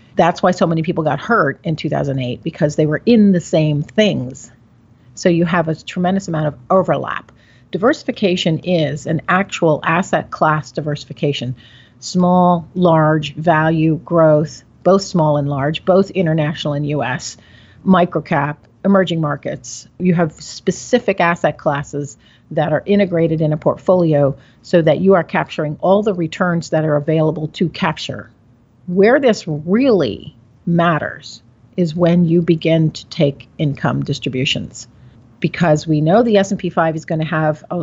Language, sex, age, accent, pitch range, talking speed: English, female, 40-59, American, 145-180 Hz, 150 wpm